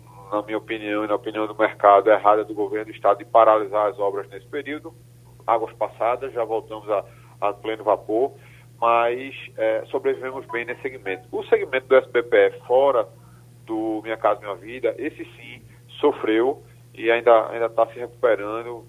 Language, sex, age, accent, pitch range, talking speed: Portuguese, male, 40-59, Brazilian, 110-125 Hz, 165 wpm